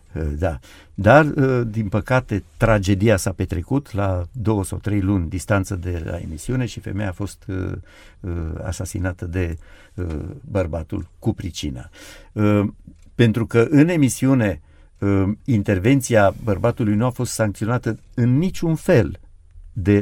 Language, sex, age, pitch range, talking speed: Romanian, male, 60-79, 90-130 Hz, 115 wpm